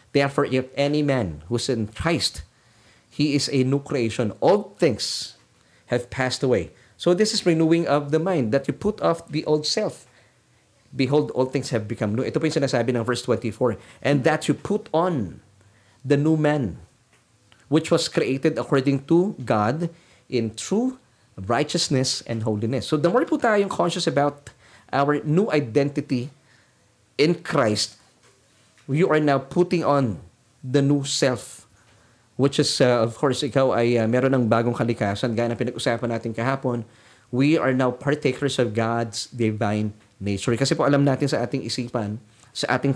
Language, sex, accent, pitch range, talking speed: Filipino, male, native, 115-145 Hz, 165 wpm